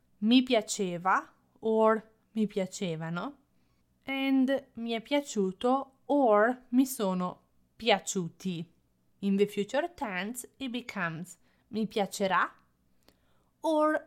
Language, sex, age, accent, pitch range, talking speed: English, female, 30-49, Italian, 195-265 Hz, 95 wpm